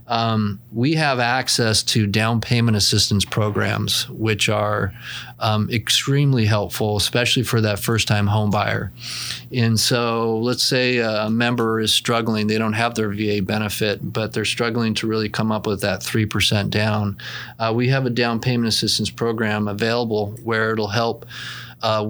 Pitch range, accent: 105-120 Hz, American